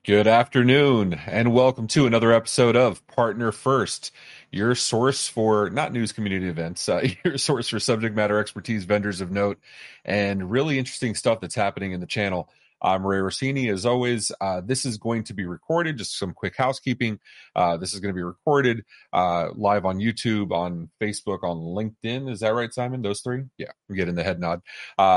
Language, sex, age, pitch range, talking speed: English, male, 30-49, 95-120 Hz, 190 wpm